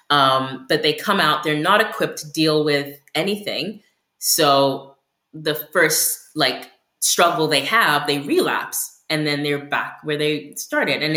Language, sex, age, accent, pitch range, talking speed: English, female, 20-39, American, 140-165 Hz, 155 wpm